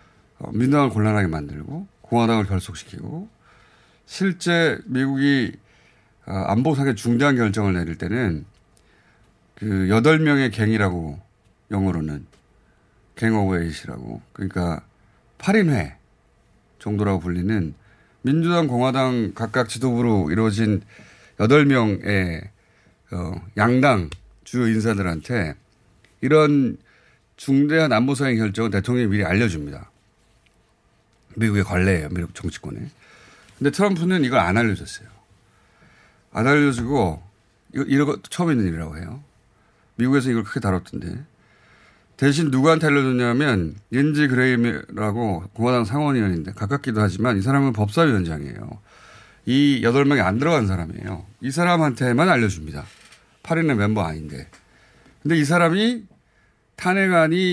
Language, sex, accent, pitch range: Korean, male, native, 95-140 Hz